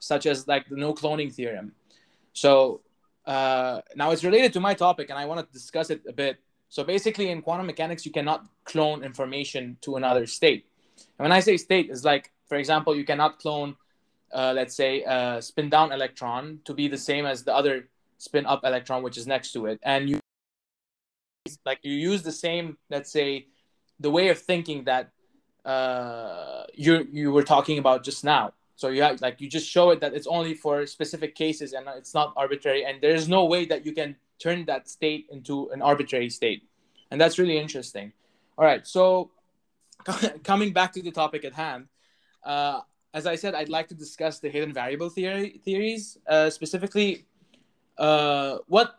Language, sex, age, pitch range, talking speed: English, male, 20-39, 135-170 Hz, 185 wpm